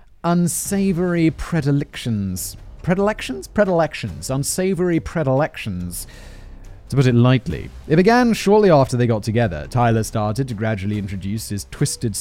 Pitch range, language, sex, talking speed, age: 105-165 Hz, English, male, 120 wpm, 30-49